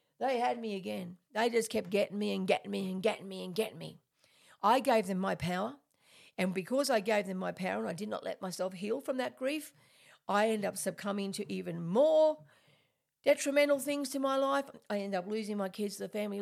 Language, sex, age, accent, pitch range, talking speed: English, female, 50-69, Australian, 180-230 Hz, 225 wpm